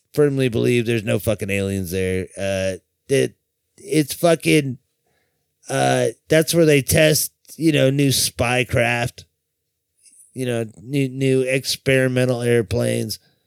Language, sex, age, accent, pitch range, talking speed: English, male, 30-49, American, 110-150 Hz, 120 wpm